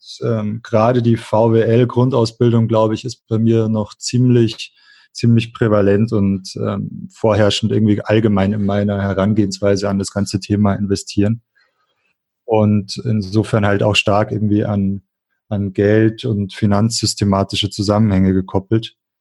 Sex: male